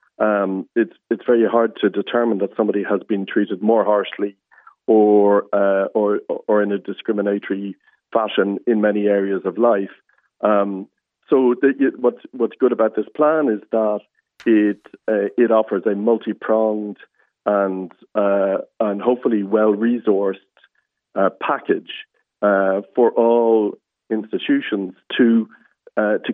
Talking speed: 140 wpm